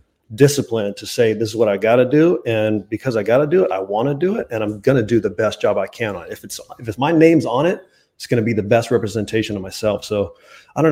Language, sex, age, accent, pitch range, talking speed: English, male, 30-49, American, 110-130 Hz, 295 wpm